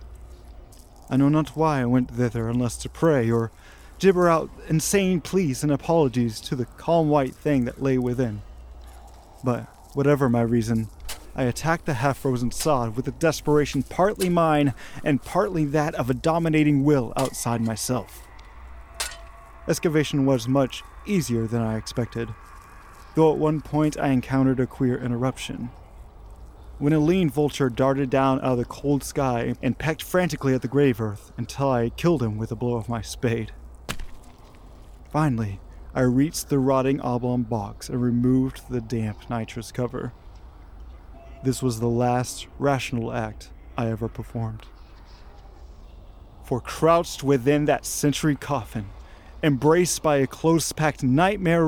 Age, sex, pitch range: 30-49, male, 110-150 Hz